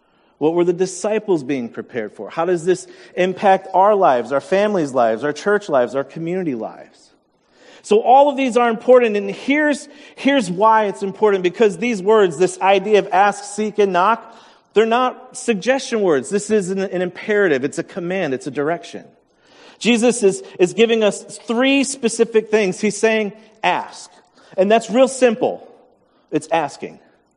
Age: 40-59